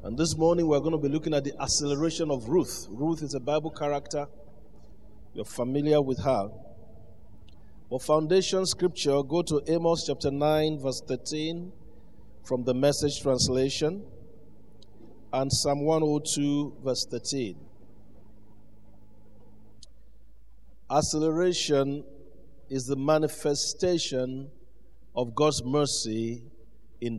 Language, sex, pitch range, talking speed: English, male, 115-160 Hz, 110 wpm